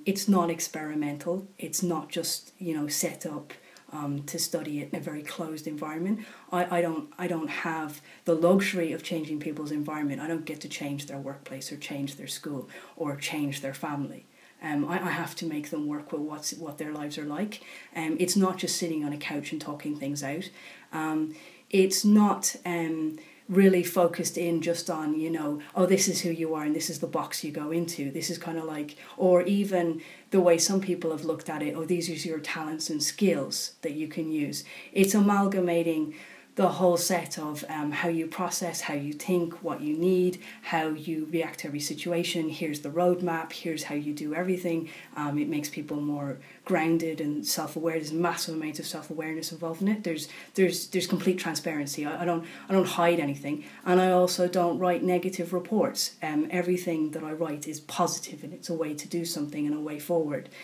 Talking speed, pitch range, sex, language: 210 wpm, 150-175 Hz, female, English